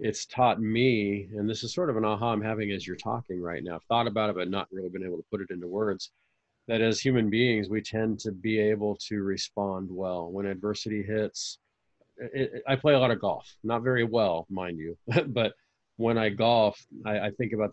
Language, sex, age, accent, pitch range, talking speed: English, male, 40-59, American, 100-115 Hz, 220 wpm